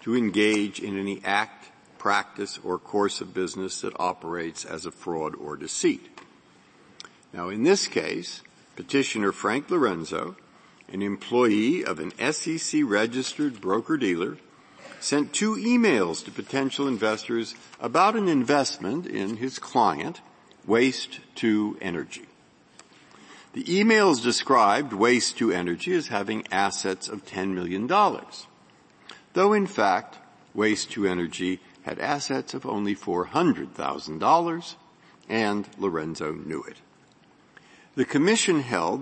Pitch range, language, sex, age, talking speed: 95-140 Hz, English, male, 50-69, 115 wpm